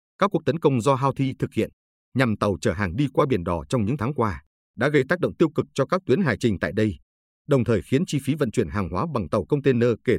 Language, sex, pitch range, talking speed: Vietnamese, male, 105-135 Hz, 270 wpm